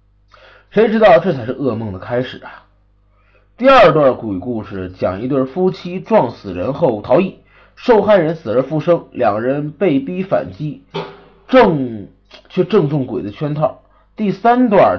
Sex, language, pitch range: male, Chinese, 130-205 Hz